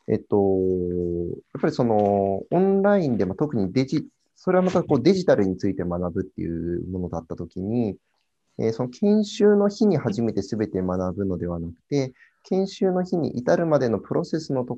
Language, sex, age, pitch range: Japanese, male, 30-49, 95-150 Hz